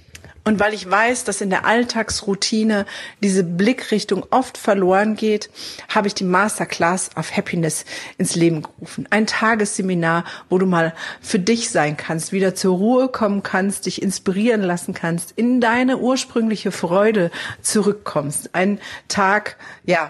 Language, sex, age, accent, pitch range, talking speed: German, female, 40-59, German, 170-215 Hz, 145 wpm